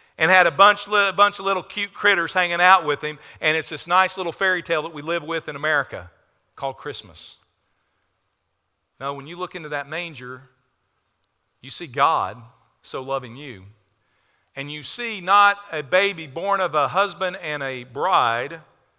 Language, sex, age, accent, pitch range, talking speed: English, male, 50-69, American, 135-190 Hz, 170 wpm